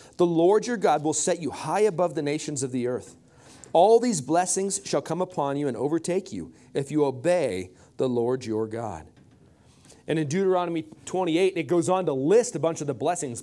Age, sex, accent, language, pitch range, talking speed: 40-59, male, American, English, 150-205 Hz, 200 wpm